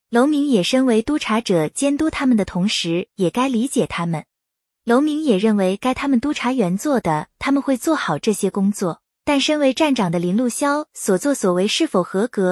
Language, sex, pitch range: Chinese, female, 195-275 Hz